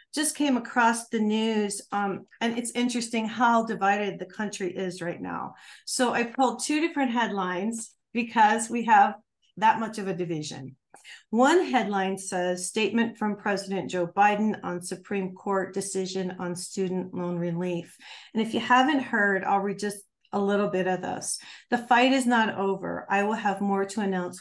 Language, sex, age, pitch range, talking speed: English, female, 40-59, 185-230 Hz, 170 wpm